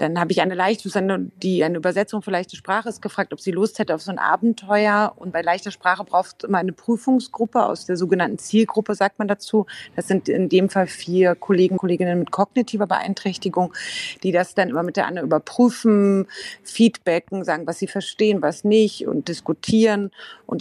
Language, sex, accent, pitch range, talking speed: German, female, German, 170-205 Hz, 190 wpm